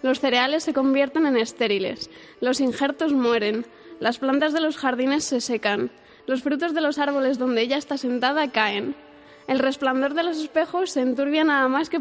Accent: Spanish